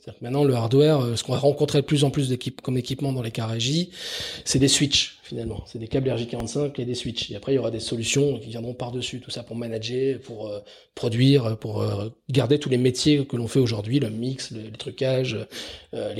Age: 20-39